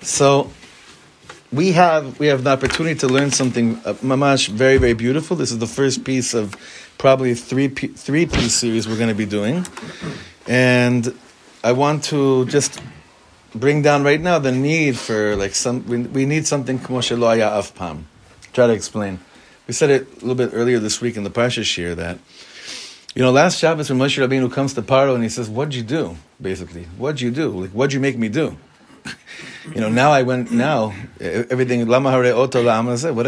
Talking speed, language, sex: 185 wpm, English, male